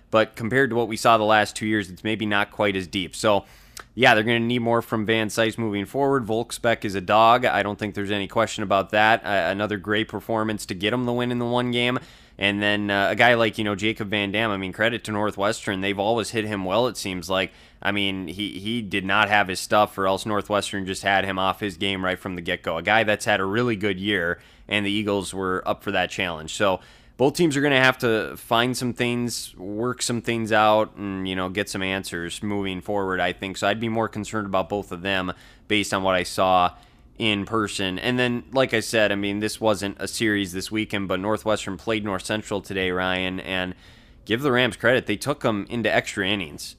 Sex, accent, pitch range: male, American, 95-115 Hz